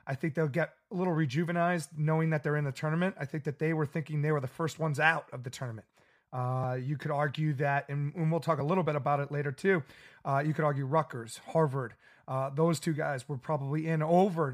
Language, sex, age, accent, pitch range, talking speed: English, male, 30-49, American, 140-170 Hz, 235 wpm